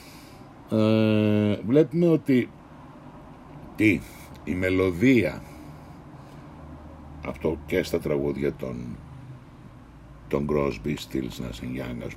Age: 60-79